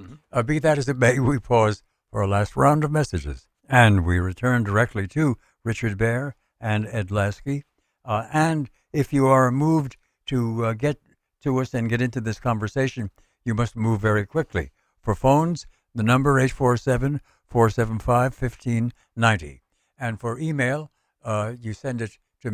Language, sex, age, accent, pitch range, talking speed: English, male, 60-79, American, 105-135 Hz, 155 wpm